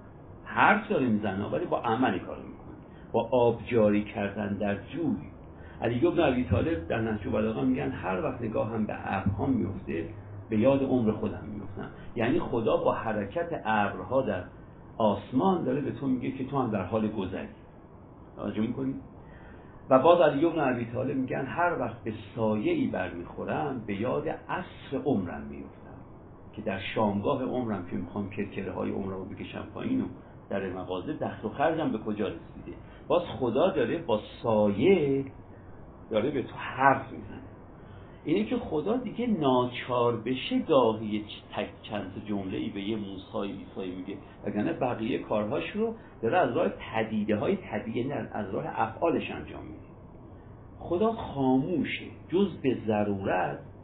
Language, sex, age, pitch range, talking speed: Persian, male, 50-69, 100-130 Hz, 155 wpm